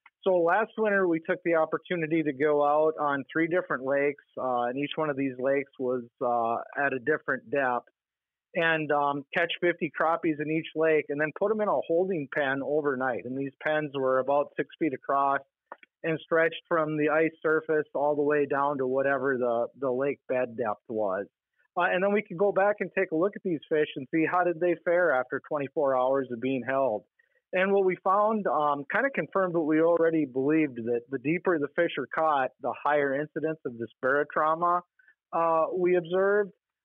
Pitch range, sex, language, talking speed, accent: 140-180 Hz, male, English, 200 wpm, American